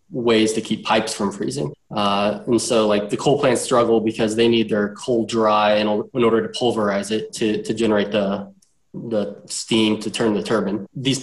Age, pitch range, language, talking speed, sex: 20-39, 105-120 Hz, English, 200 wpm, male